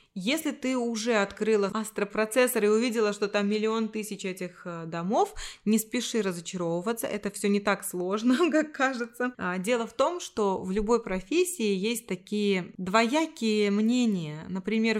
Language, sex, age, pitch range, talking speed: Russian, female, 20-39, 185-225 Hz, 140 wpm